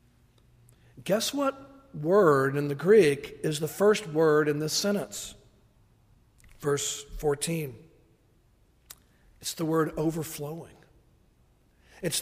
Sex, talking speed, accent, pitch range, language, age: male, 100 wpm, American, 140-190 Hz, English, 50-69